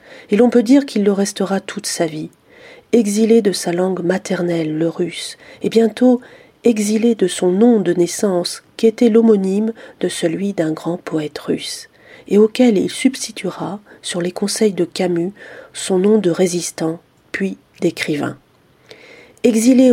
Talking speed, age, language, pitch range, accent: 150 wpm, 40-59, French, 175-225 Hz, French